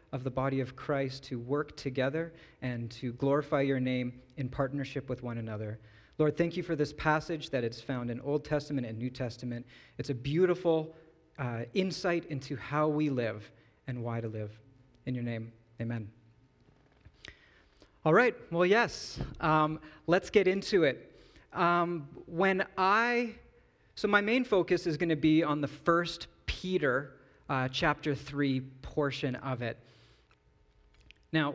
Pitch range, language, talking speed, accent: 130-175 Hz, English, 150 wpm, American